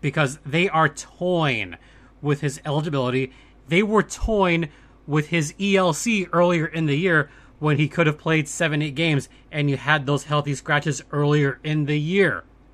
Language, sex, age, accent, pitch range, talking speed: English, male, 30-49, American, 140-175 Hz, 160 wpm